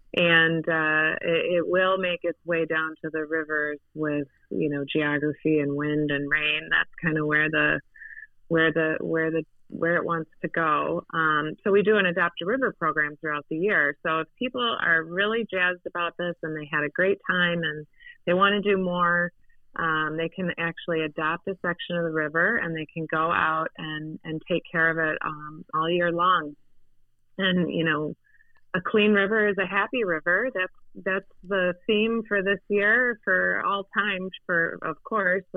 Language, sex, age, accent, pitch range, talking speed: English, female, 30-49, American, 160-190 Hz, 190 wpm